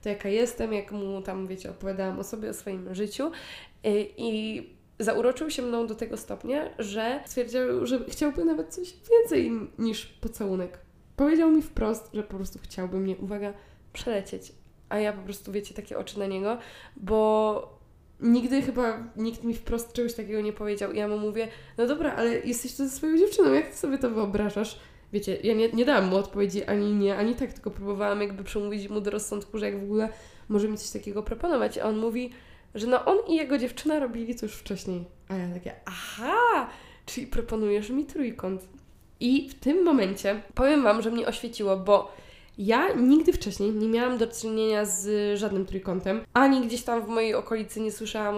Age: 20-39